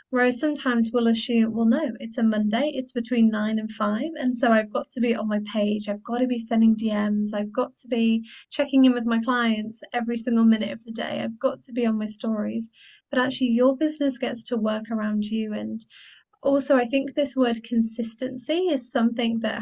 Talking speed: 215 wpm